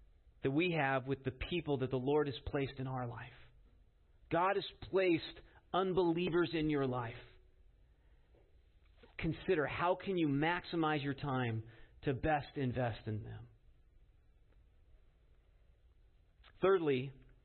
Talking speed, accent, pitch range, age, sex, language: 115 wpm, American, 105-175 Hz, 40-59, male, English